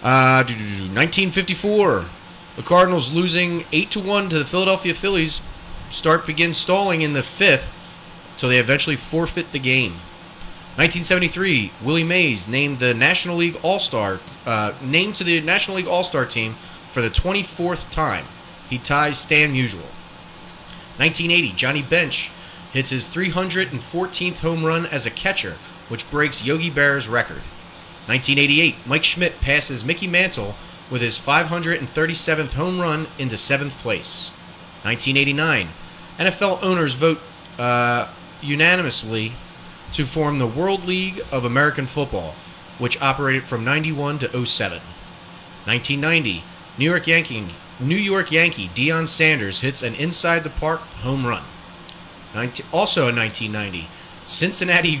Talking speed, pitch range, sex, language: 120 wpm, 120-170 Hz, male, English